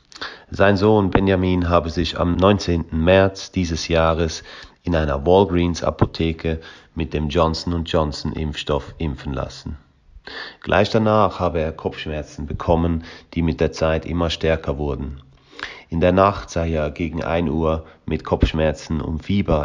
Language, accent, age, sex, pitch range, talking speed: German, German, 40-59, male, 80-95 Hz, 135 wpm